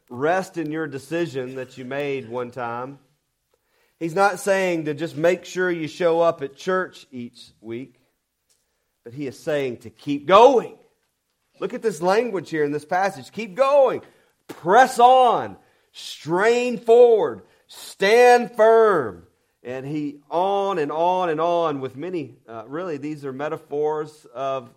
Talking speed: 150 wpm